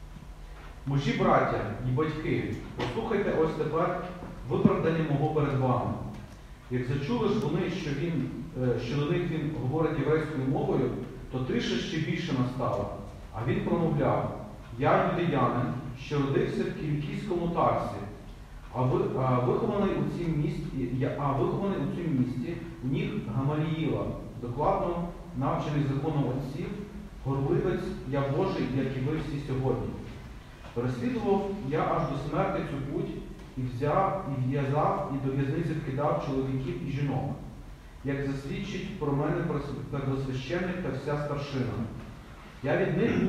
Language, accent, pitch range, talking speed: Ukrainian, native, 130-165 Hz, 125 wpm